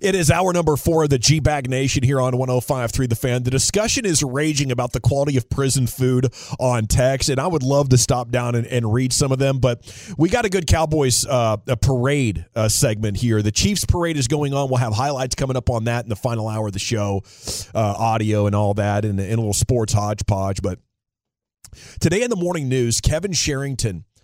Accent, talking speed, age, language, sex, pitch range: American, 225 wpm, 30-49, English, male, 110-140 Hz